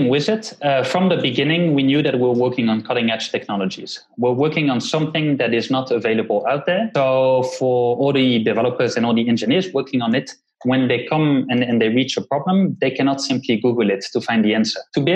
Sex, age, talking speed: male, 20-39, 220 wpm